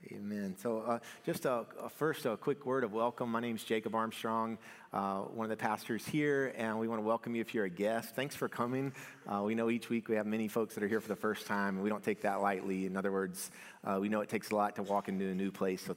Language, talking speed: English, 280 wpm